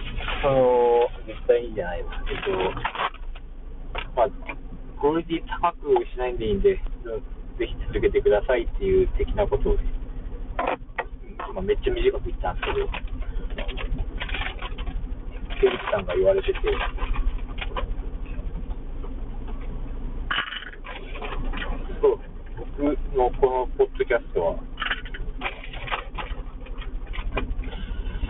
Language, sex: Japanese, male